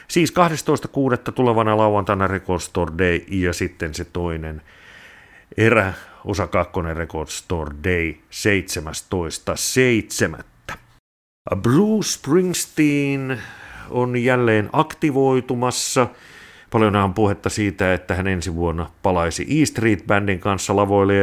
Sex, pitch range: male, 90-115 Hz